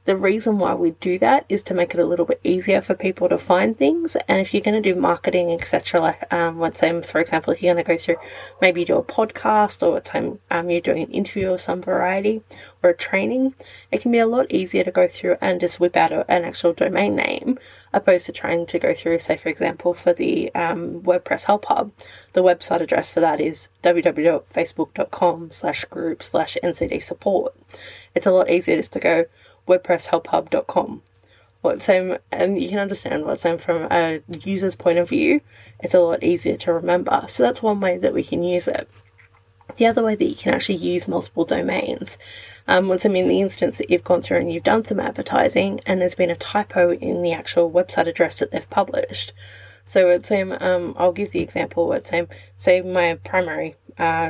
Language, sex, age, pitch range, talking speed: English, female, 20-39, 170-200 Hz, 215 wpm